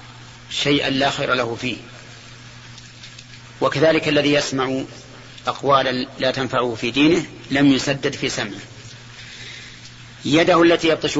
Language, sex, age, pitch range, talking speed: Arabic, male, 40-59, 120-145 Hz, 105 wpm